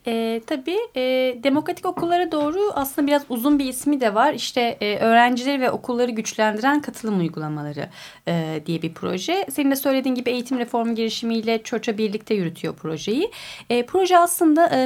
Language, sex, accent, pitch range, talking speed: Turkish, female, native, 200-300 Hz, 160 wpm